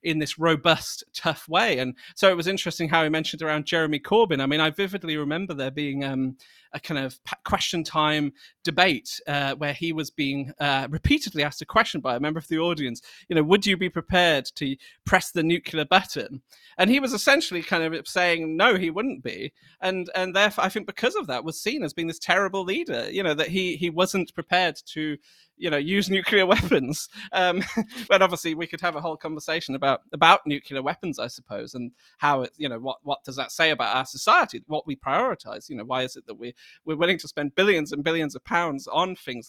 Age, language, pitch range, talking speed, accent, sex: 30-49, English, 140-190 Hz, 220 wpm, British, male